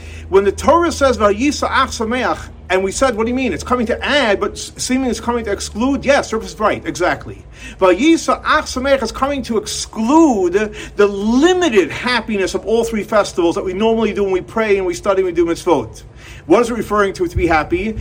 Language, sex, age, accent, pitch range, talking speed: English, male, 40-59, American, 170-250 Hz, 210 wpm